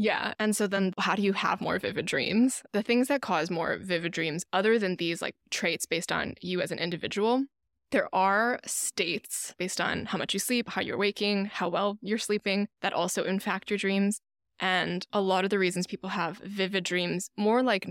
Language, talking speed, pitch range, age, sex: English, 210 wpm, 180-215 Hz, 20-39, female